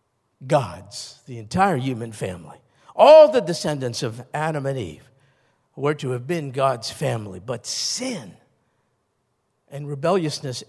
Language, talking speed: English, 125 wpm